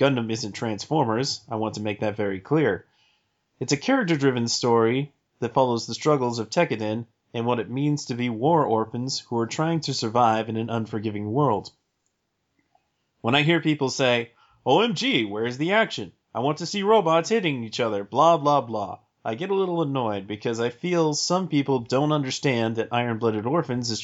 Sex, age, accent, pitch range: male, 30-49, American, 115-140 Hz